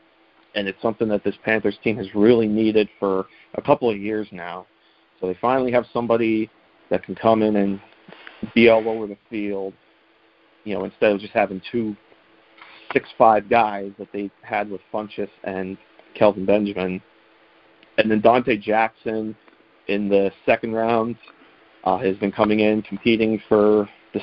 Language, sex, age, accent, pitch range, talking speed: English, male, 40-59, American, 100-110 Hz, 160 wpm